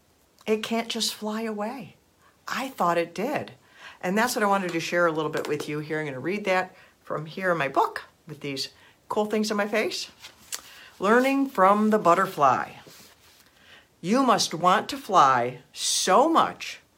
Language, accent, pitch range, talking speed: English, American, 160-245 Hz, 175 wpm